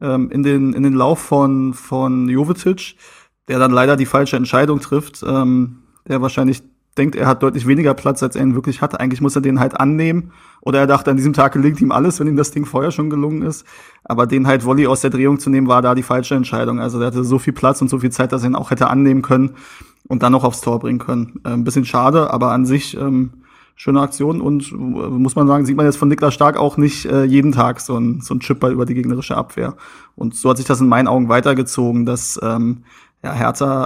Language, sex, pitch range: German, male, 130-145 Hz